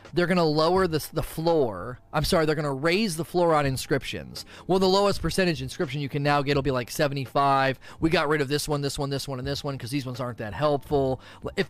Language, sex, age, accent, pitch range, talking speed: English, male, 30-49, American, 135-180 Hz, 255 wpm